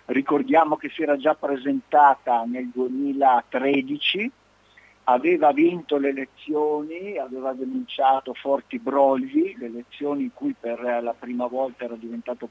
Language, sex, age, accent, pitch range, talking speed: Italian, male, 50-69, native, 120-160 Hz, 125 wpm